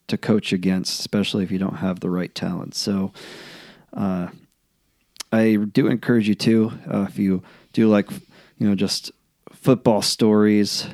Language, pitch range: English, 95-110 Hz